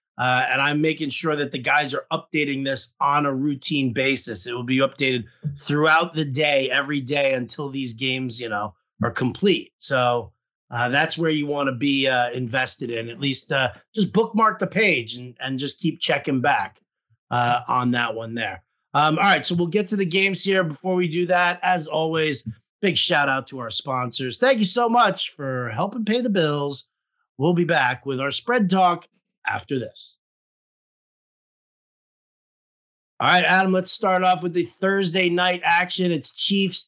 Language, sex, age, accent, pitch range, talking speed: English, male, 30-49, American, 135-190 Hz, 185 wpm